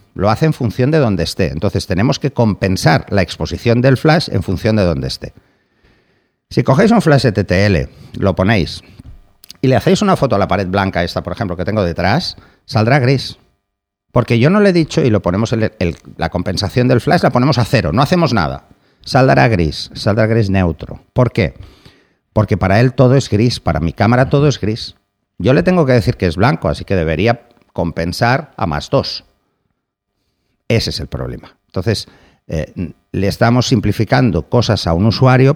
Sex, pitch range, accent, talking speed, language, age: male, 95-125 Hz, Spanish, 190 wpm, Spanish, 50-69